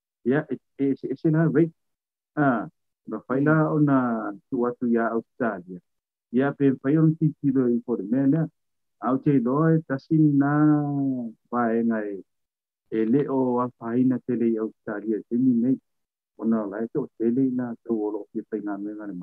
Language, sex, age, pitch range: English, male, 50-69, 110-145 Hz